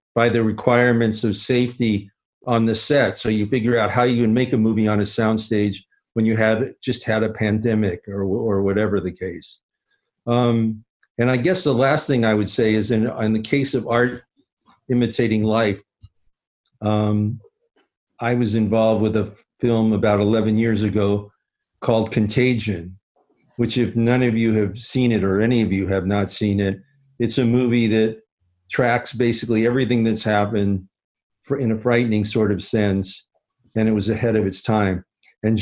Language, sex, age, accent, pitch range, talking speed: English, male, 50-69, American, 105-120 Hz, 175 wpm